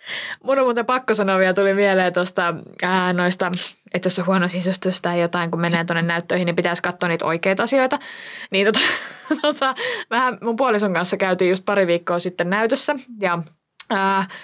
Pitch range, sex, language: 185-260 Hz, female, Finnish